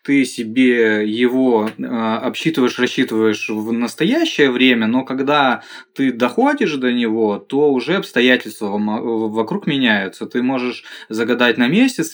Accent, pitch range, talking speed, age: native, 110-130 Hz, 125 wpm, 20-39